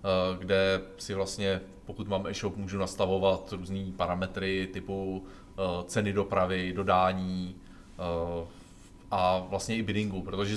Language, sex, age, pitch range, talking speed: Czech, male, 20-39, 95-115 Hz, 110 wpm